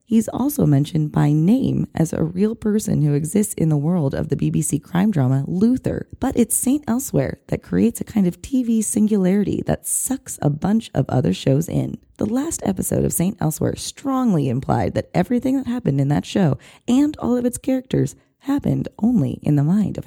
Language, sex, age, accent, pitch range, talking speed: English, female, 30-49, American, 165-245 Hz, 195 wpm